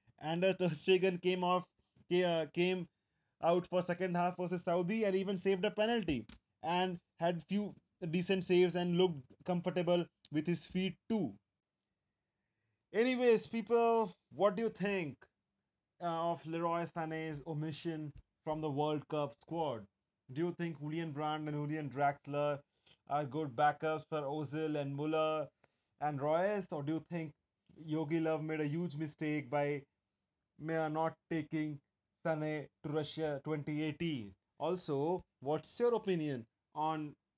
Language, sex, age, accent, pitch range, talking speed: English, male, 20-39, Indian, 145-175 Hz, 135 wpm